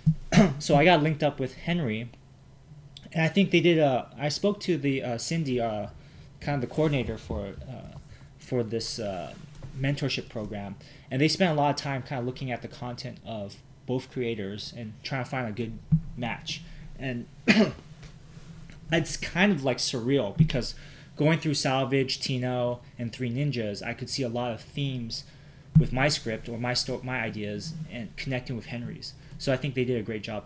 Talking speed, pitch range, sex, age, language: 190 wpm, 120-150 Hz, male, 20-39, English